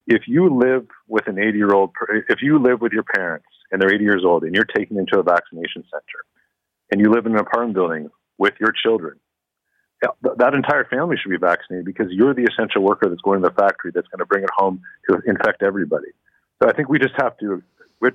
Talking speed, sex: 230 wpm, male